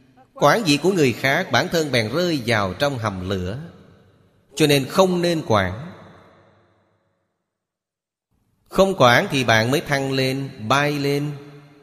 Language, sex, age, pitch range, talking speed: Vietnamese, male, 30-49, 110-145 Hz, 135 wpm